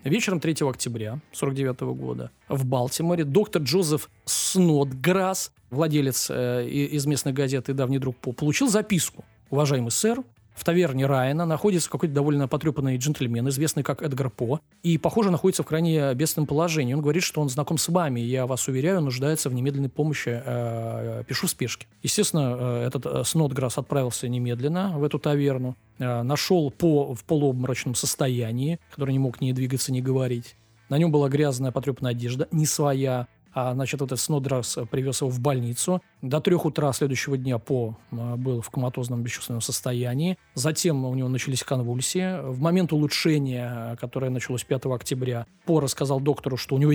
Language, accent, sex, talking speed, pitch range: Russian, native, male, 155 wpm, 125-155 Hz